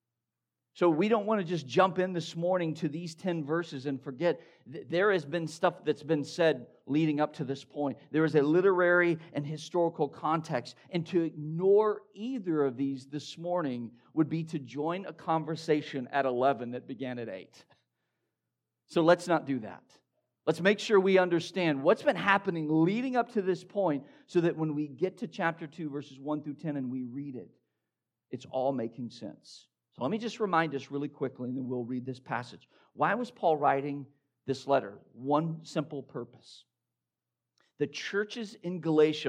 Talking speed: 185 wpm